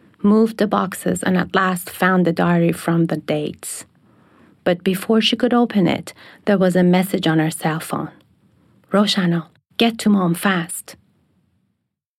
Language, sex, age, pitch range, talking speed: English, female, 30-49, 175-205 Hz, 155 wpm